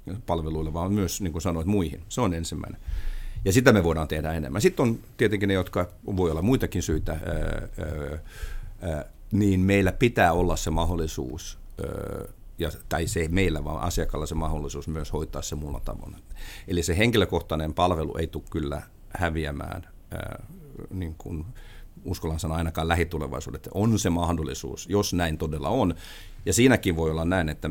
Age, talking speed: 50-69, 145 wpm